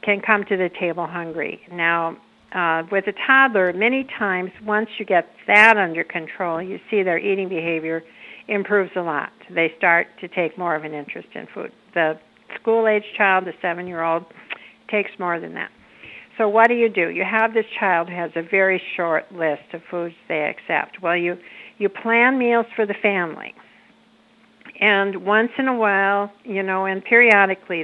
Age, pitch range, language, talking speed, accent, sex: 60-79, 175-210 Hz, English, 175 wpm, American, female